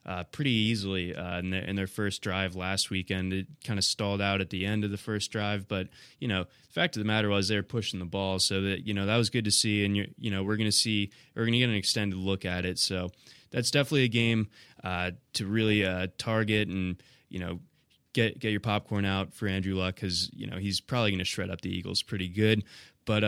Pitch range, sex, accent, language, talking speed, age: 100-130 Hz, male, American, English, 250 wpm, 20-39